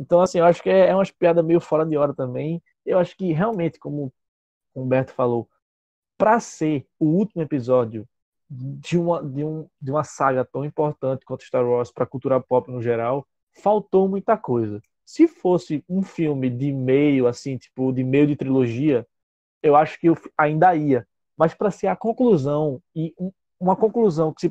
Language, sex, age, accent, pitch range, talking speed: Portuguese, male, 20-39, Brazilian, 140-195 Hz, 185 wpm